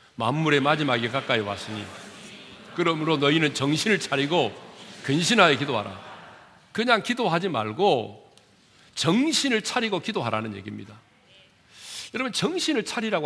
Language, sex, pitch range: Korean, male, 110-165 Hz